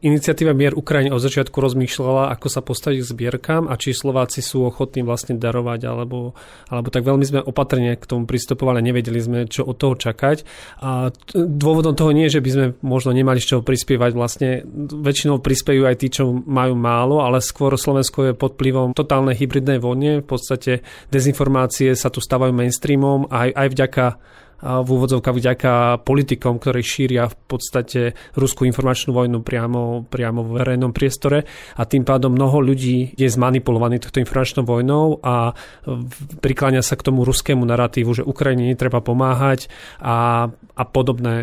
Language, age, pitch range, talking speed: Slovak, 30-49, 125-135 Hz, 165 wpm